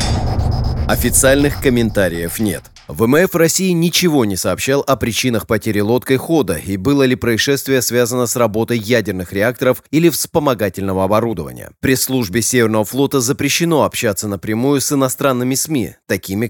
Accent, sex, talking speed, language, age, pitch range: native, male, 130 wpm, Russian, 30-49, 105-135 Hz